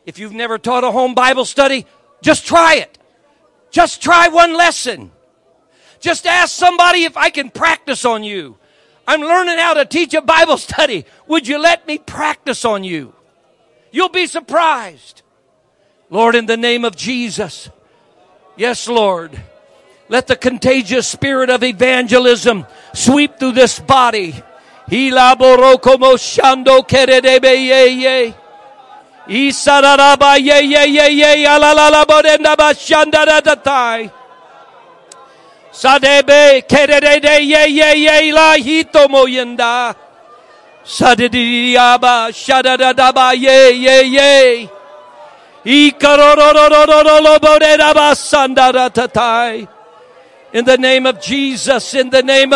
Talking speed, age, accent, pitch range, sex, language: 115 wpm, 60-79, American, 250-300 Hz, male, English